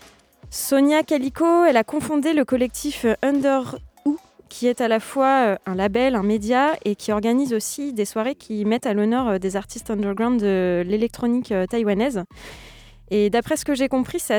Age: 20-39